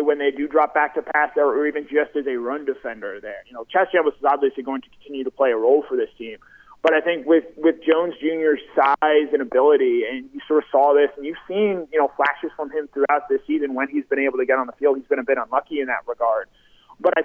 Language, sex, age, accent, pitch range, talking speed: English, male, 30-49, American, 140-165 Hz, 265 wpm